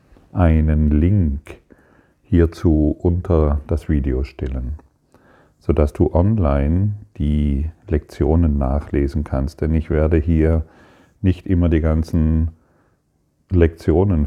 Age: 40-59